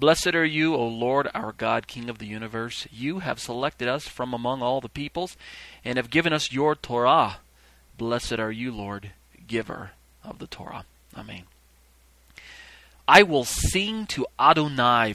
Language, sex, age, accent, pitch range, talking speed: English, male, 30-49, American, 110-135 Hz, 160 wpm